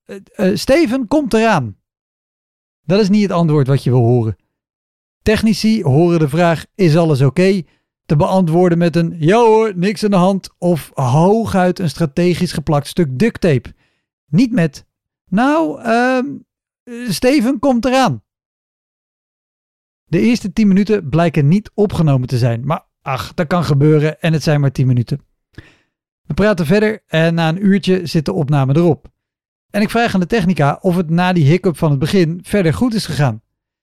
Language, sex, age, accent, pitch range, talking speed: Dutch, male, 50-69, Dutch, 145-210 Hz, 170 wpm